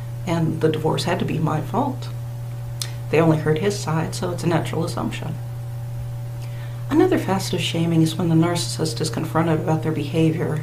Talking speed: 175 wpm